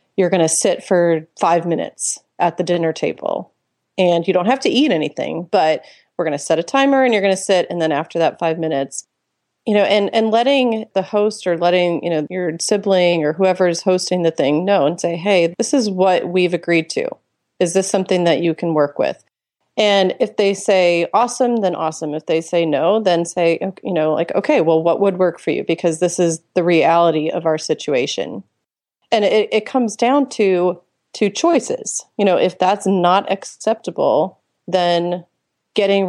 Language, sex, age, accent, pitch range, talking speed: English, female, 30-49, American, 170-200 Hz, 200 wpm